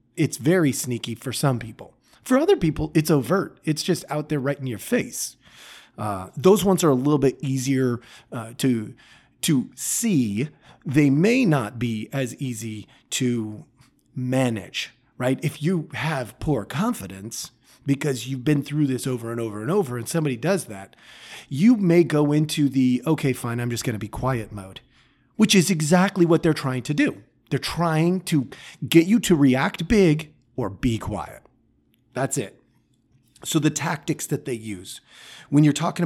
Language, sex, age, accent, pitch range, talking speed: English, male, 30-49, American, 120-160 Hz, 170 wpm